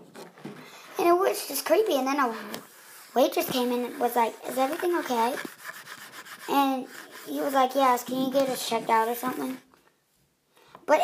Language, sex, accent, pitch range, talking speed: English, male, American, 235-350 Hz, 170 wpm